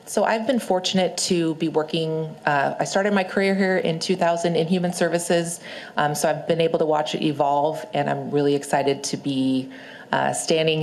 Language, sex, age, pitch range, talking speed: English, female, 40-59, 145-180 Hz, 195 wpm